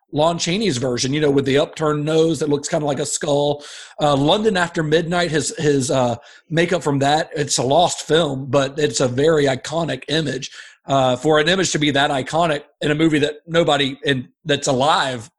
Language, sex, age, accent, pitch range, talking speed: English, male, 40-59, American, 140-175 Hz, 205 wpm